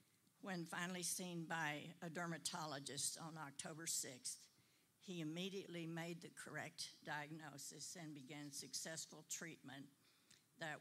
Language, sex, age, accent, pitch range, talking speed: English, female, 60-79, American, 150-175 Hz, 110 wpm